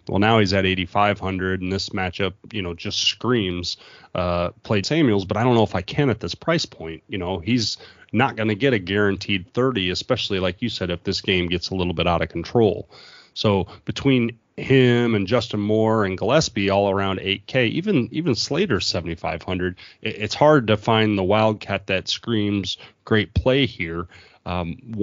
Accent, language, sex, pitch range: American, English, male, 95-120 Hz